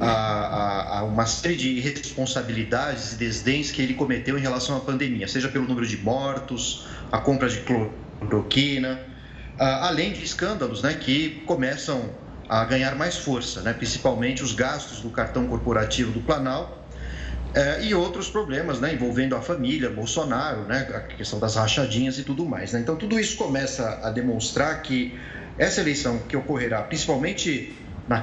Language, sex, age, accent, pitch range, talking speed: Portuguese, male, 40-59, Brazilian, 115-145 Hz, 150 wpm